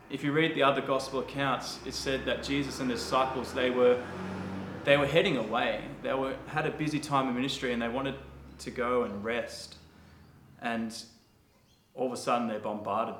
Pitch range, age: 110-135 Hz, 20-39